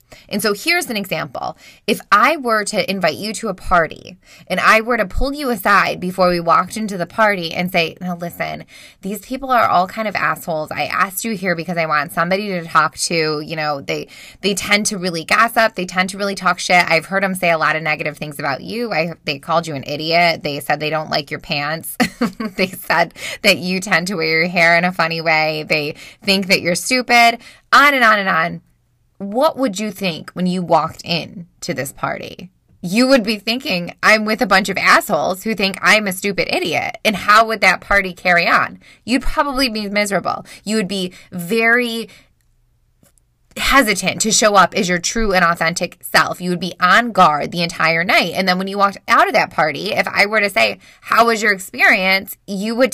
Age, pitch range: 20-39, 170-225 Hz